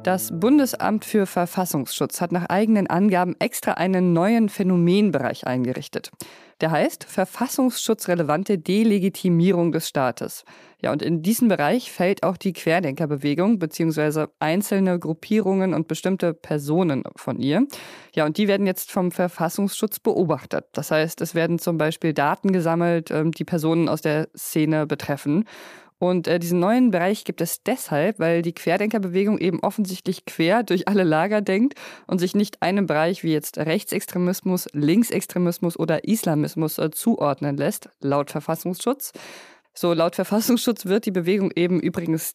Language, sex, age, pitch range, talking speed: German, female, 20-39, 160-200 Hz, 140 wpm